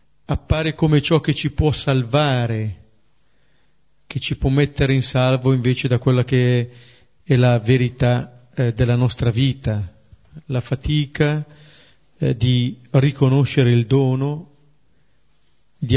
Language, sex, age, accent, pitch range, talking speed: Italian, male, 40-59, native, 120-140 Hz, 125 wpm